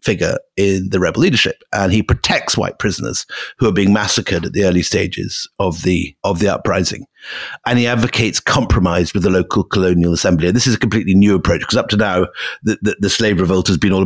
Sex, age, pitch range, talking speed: male, 50-69, 95-125 Hz, 220 wpm